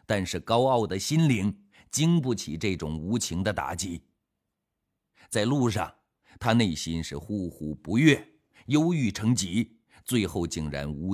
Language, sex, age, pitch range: Chinese, male, 50-69, 85-115 Hz